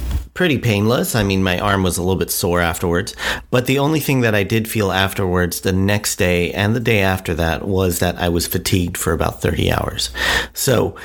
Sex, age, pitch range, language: male, 40-59, 90-115 Hz, English